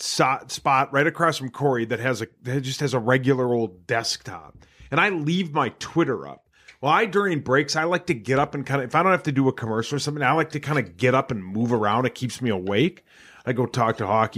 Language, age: English, 30-49